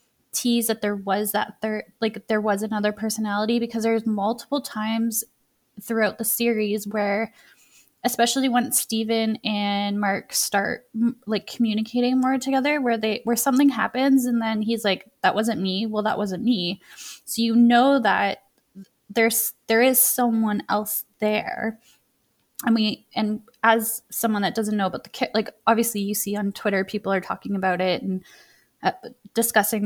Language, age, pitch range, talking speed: English, 10-29, 210-235 Hz, 160 wpm